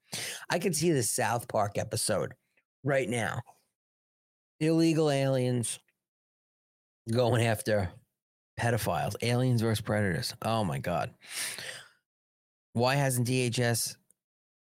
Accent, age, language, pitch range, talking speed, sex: American, 40-59, English, 110-140 Hz, 95 wpm, male